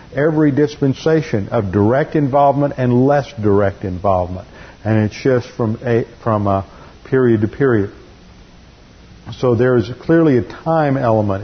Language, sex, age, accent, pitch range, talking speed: English, male, 50-69, American, 110-145 Hz, 135 wpm